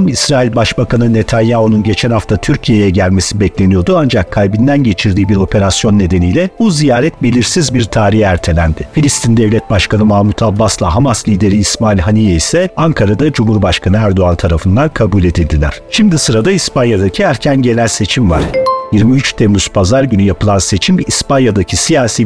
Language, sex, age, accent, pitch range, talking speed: Turkish, male, 50-69, native, 100-140 Hz, 135 wpm